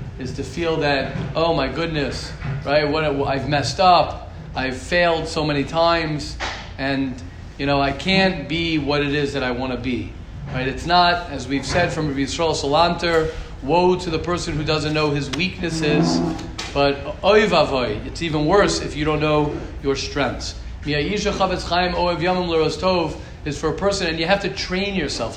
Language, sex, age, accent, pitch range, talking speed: English, male, 40-59, American, 145-190 Hz, 165 wpm